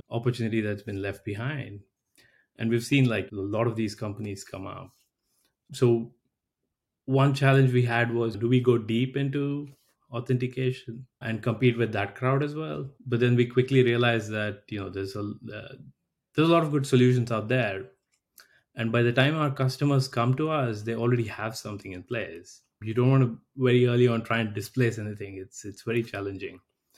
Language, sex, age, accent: English, male, 20-39, Indian